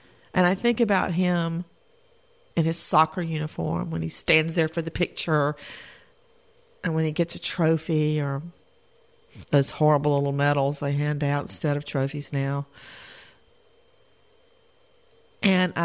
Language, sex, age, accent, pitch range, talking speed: English, female, 50-69, American, 155-200 Hz, 135 wpm